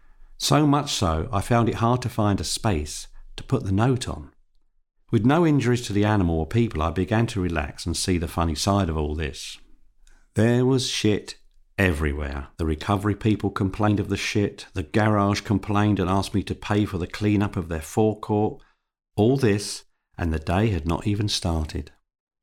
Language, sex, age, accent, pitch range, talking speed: English, male, 50-69, British, 85-110 Hz, 185 wpm